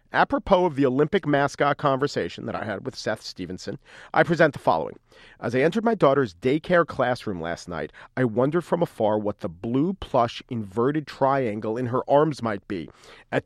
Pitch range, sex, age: 125-175 Hz, male, 40-59